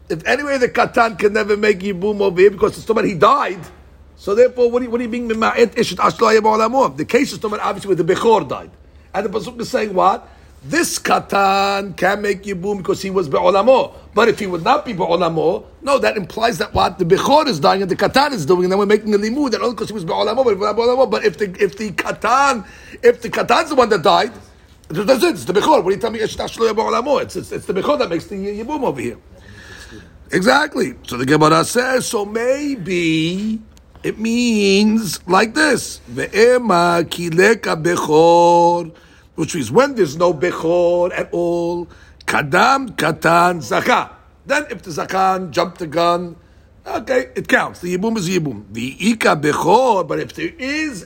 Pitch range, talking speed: 180-240 Hz, 180 wpm